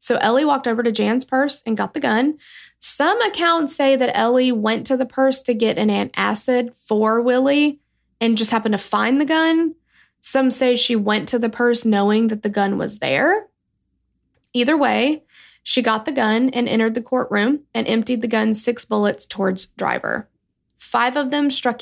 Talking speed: 185 wpm